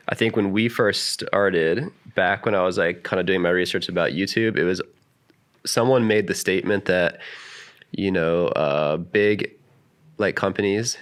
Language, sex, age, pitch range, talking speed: English, male, 20-39, 90-105 Hz, 170 wpm